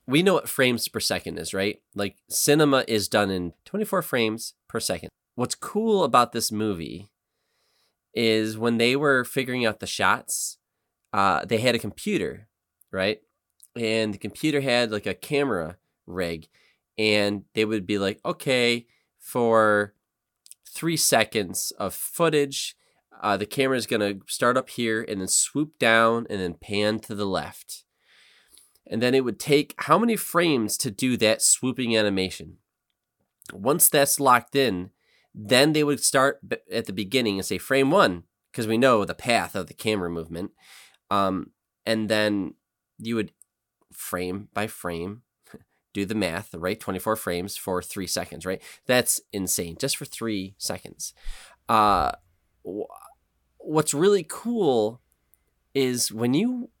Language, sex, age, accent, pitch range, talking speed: English, male, 20-39, American, 95-130 Hz, 150 wpm